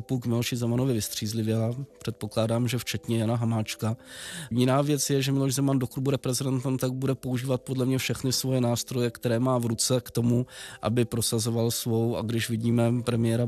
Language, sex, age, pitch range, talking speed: Czech, male, 20-39, 115-125 Hz, 180 wpm